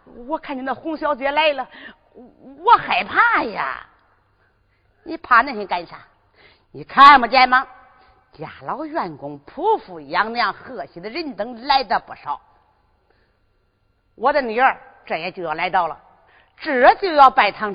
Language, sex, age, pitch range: Chinese, female, 40-59, 190-305 Hz